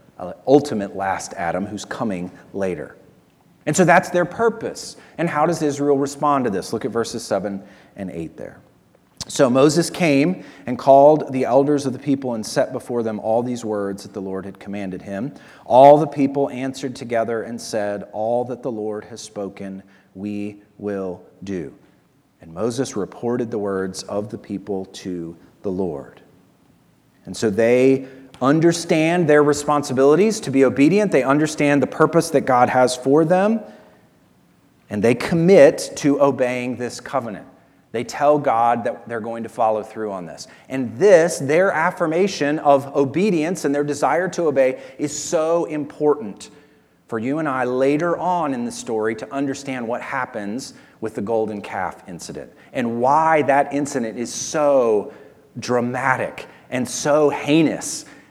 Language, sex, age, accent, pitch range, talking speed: English, male, 40-59, American, 110-150 Hz, 155 wpm